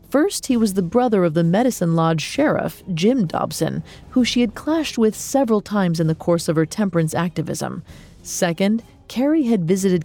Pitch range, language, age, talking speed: 170-235 Hz, English, 40-59, 180 wpm